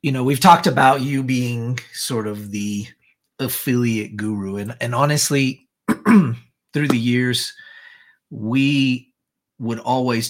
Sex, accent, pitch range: male, American, 105-135 Hz